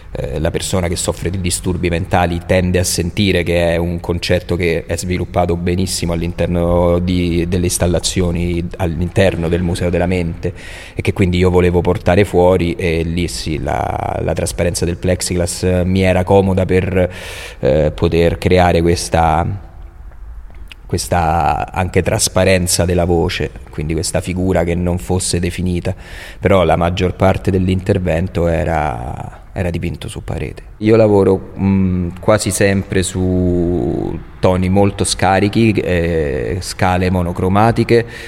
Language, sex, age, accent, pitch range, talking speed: Italian, male, 30-49, native, 85-95 Hz, 130 wpm